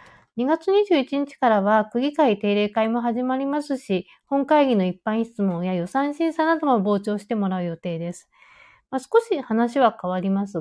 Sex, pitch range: female, 200-295 Hz